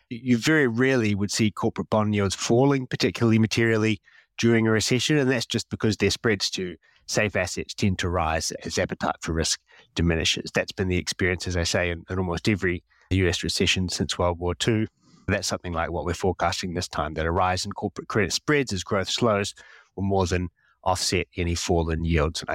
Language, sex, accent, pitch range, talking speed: English, male, Australian, 90-120 Hz, 200 wpm